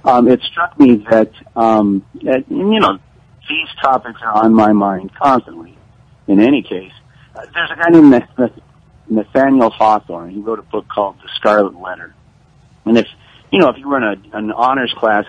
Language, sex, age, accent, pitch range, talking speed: English, male, 50-69, American, 105-140 Hz, 175 wpm